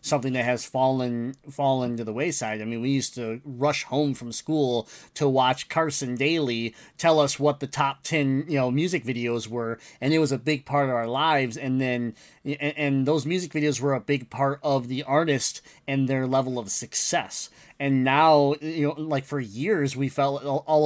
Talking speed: 200 wpm